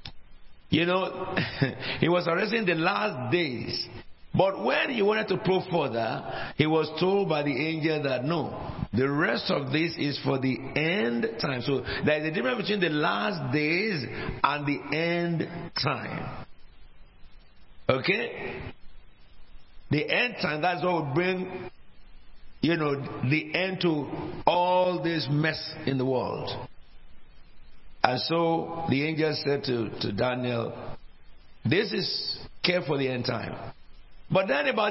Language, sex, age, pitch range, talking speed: English, male, 60-79, 130-180 Hz, 140 wpm